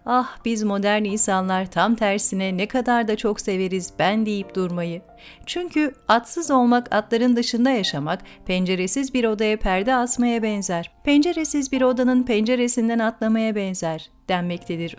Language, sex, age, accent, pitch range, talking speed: Turkish, female, 40-59, native, 190-255 Hz, 130 wpm